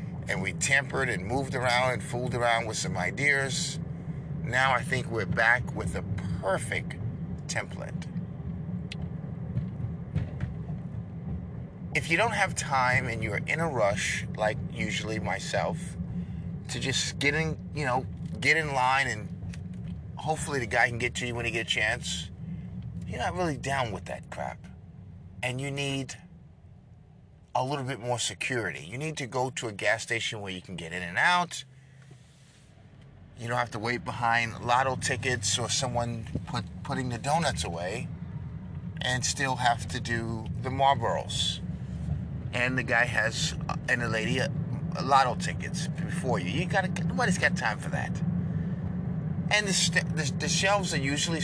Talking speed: 160 wpm